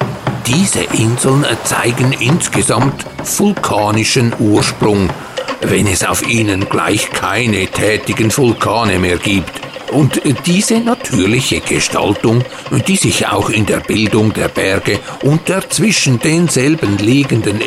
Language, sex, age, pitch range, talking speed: German, male, 60-79, 110-145 Hz, 110 wpm